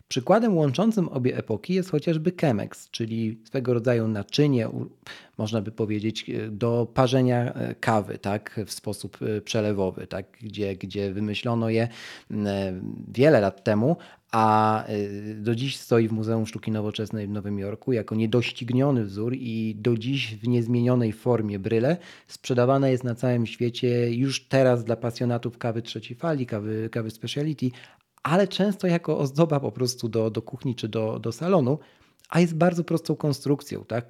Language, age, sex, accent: Polish, 40-59, male, native